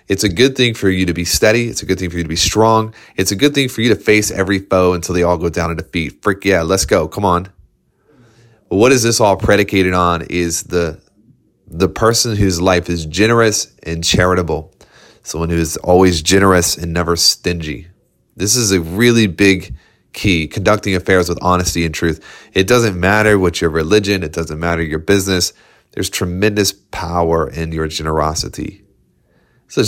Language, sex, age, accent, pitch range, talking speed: English, male, 30-49, American, 85-105 Hz, 195 wpm